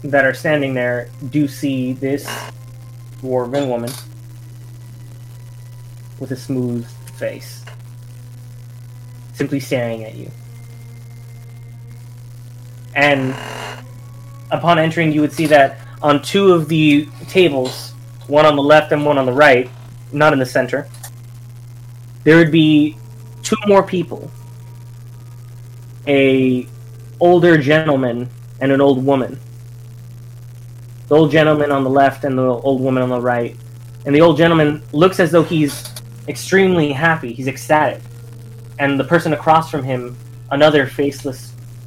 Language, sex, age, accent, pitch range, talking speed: English, male, 20-39, American, 120-145 Hz, 125 wpm